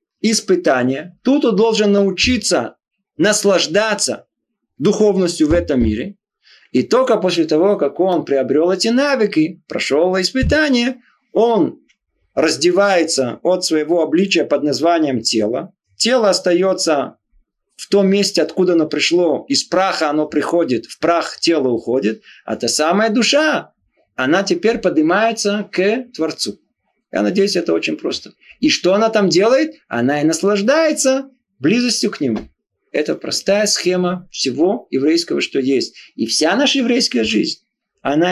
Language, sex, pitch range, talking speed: Russian, male, 170-235 Hz, 130 wpm